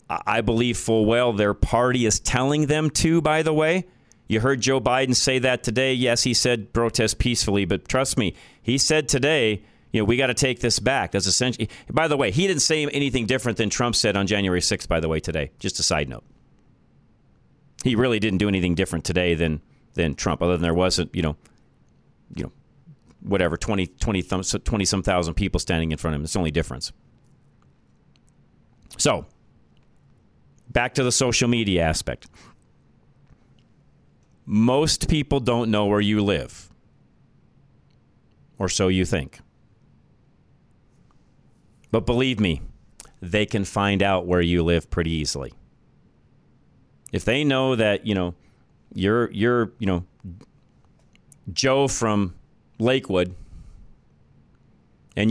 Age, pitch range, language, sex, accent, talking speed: 40-59, 90-125 Hz, English, male, American, 150 wpm